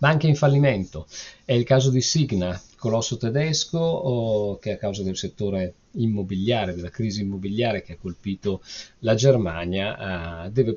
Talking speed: 145 wpm